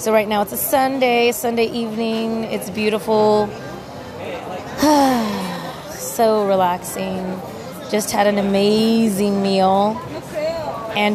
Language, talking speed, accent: English, 95 wpm, American